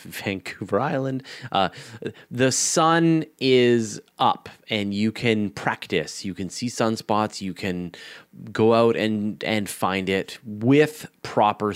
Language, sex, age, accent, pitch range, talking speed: English, male, 30-49, American, 95-115 Hz, 130 wpm